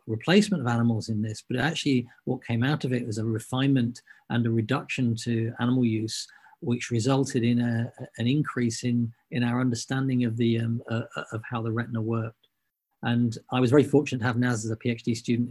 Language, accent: English, British